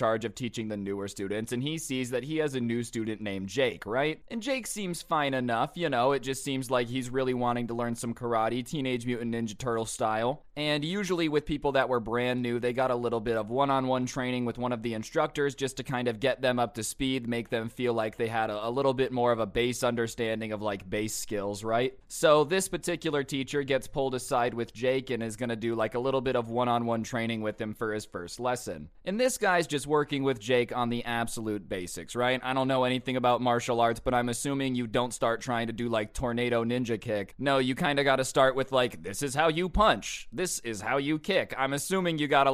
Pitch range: 115-135 Hz